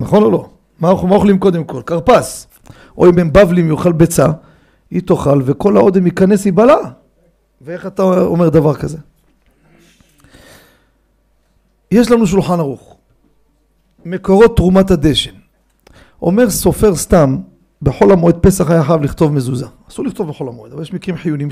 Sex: male